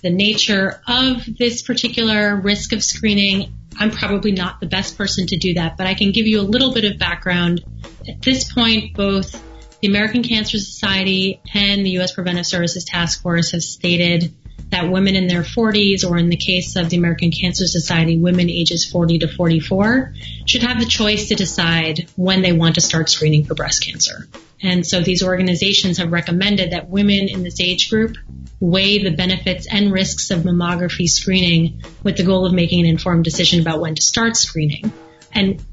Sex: female